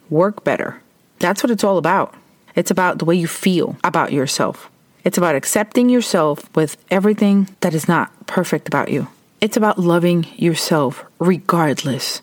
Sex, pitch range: female, 155-185 Hz